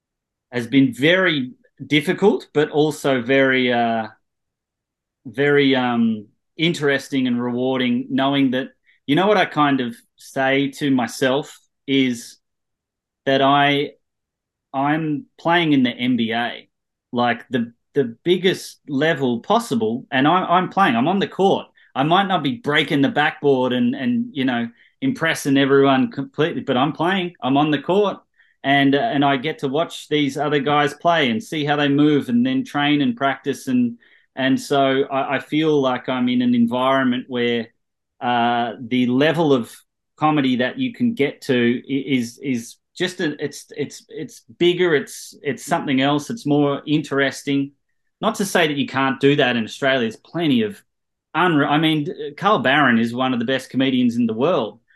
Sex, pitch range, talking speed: male, 130-160 Hz, 165 wpm